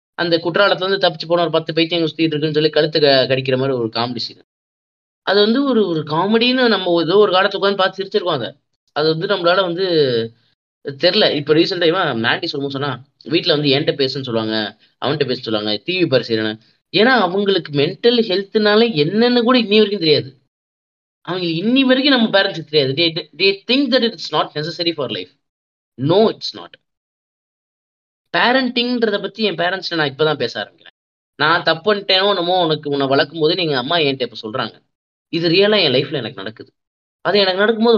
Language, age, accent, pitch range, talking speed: Tamil, 20-39, native, 145-200 Hz, 90 wpm